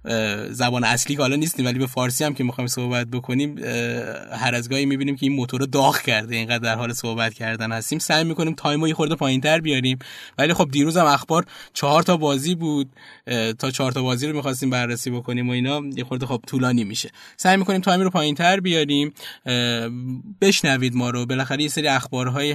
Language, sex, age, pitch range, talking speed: Persian, male, 20-39, 120-140 Hz, 190 wpm